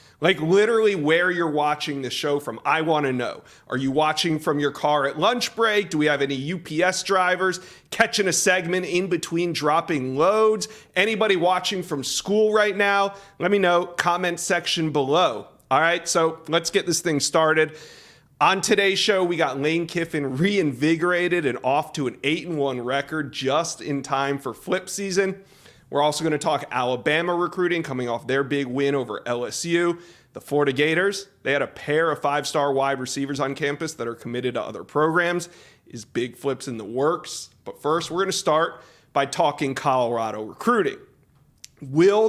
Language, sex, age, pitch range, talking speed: English, male, 40-59, 140-180 Hz, 175 wpm